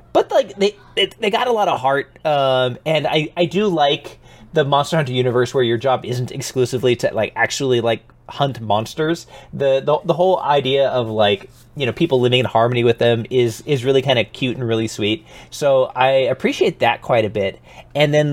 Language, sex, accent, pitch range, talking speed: English, male, American, 125-165 Hz, 205 wpm